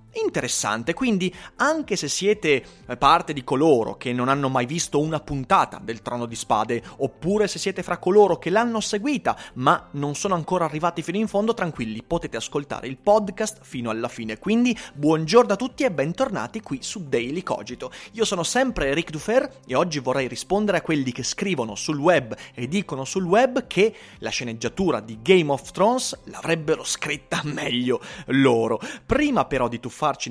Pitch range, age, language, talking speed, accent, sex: 130-200 Hz, 30-49, Italian, 175 wpm, native, male